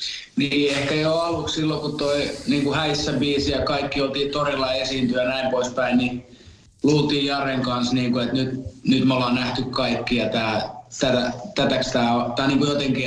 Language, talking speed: Finnish, 180 wpm